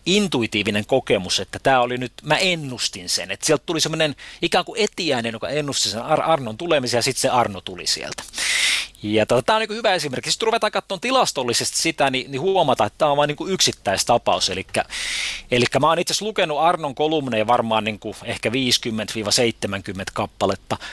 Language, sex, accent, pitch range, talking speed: Finnish, male, native, 110-160 Hz, 175 wpm